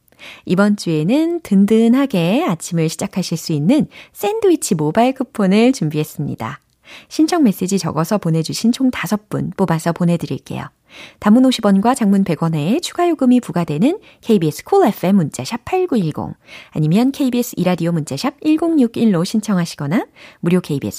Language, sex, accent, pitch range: Korean, female, native, 165-255 Hz